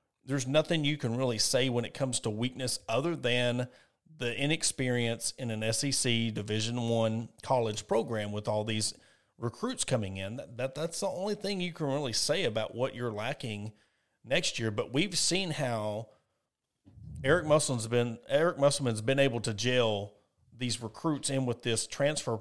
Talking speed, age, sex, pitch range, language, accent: 170 wpm, 40-59, male, 115-140 Hz, English, American